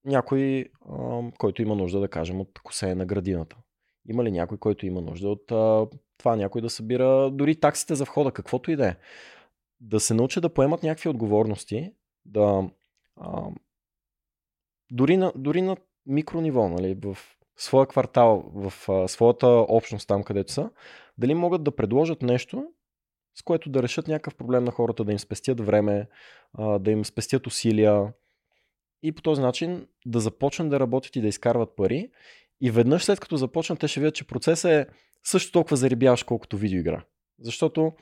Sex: male